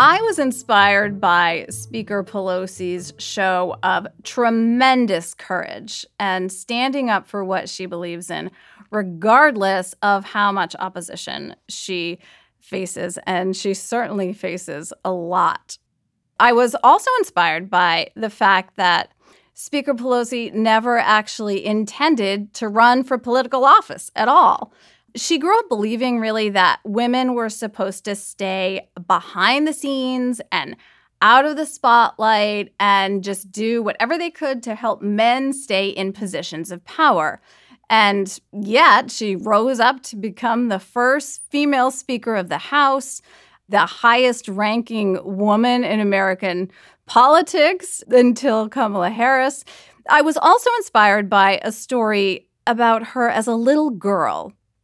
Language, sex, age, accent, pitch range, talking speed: English, female, 30-49, American, 195-250 Hz, 130 wpm